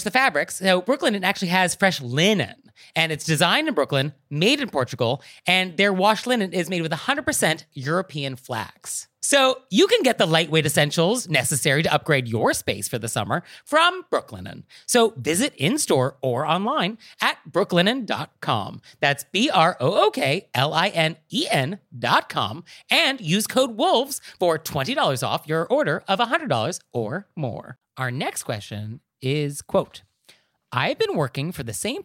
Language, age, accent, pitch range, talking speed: English, 30-49, American, 130-200 Hz, 160 wpm